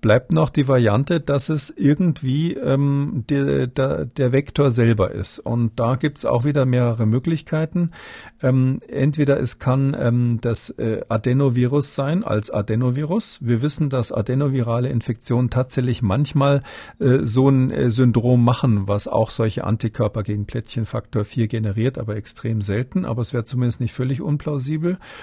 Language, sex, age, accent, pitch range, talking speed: German, male, 50-69, German, 115-140 Hz, 145 wpm